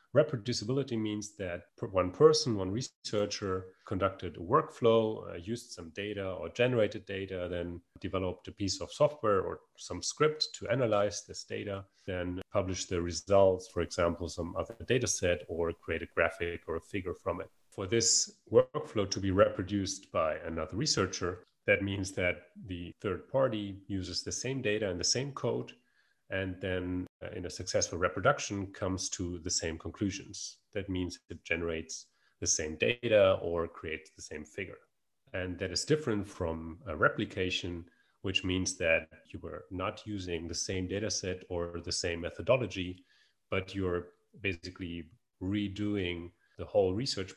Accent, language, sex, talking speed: German, English, male, 155 wpm